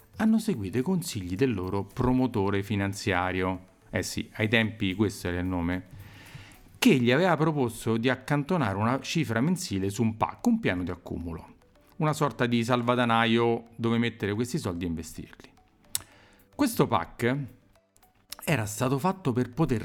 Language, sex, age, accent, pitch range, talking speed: Italian, male, 40-59, native, 95-135 Hz, 150 wpm